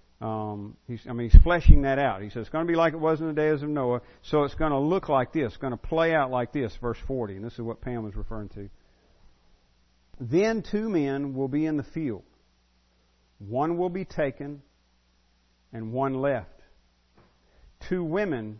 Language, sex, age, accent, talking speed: English, male, 50-69, American, 205 wpm